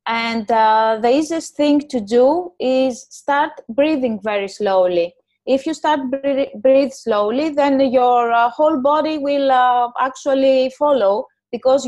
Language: English